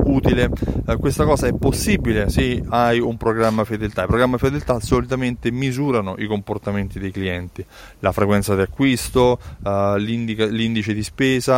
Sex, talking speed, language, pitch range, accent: male, 145 wpm, Italian, 105-140 Hz, native